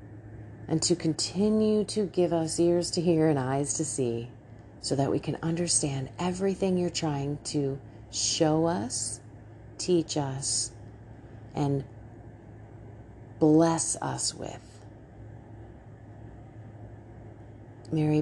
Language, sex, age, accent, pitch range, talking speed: English, female, 30-49, American, 115-165 Hz, 100 wpm